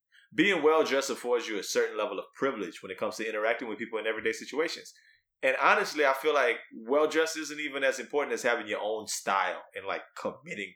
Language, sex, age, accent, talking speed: English, male, 20-39, American, 205 wpm